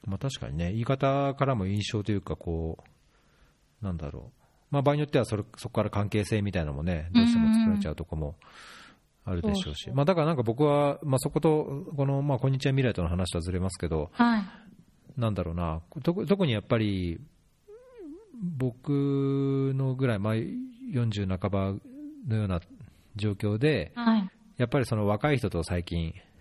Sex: male